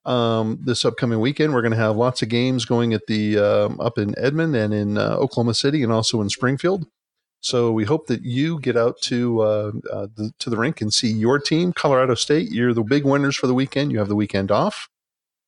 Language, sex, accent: English, male, American